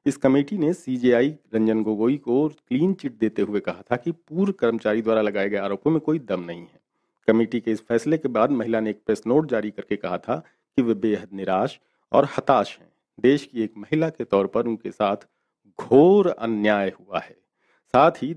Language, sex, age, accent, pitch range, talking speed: Hindi, male, 50-69, native, 110-150 Hz, 120 wpm